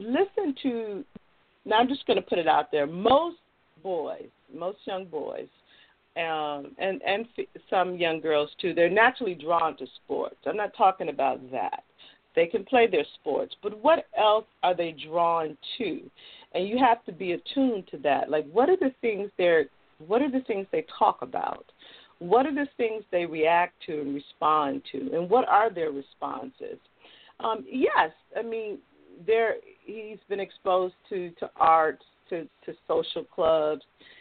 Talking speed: 170 wpm